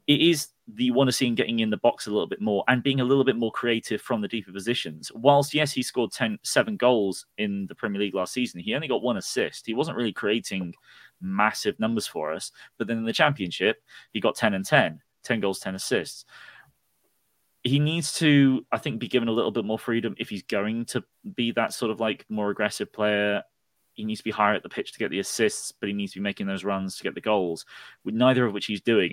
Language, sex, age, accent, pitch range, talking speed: English, male, 20-39, British, 100-130 Hz, 245 wpm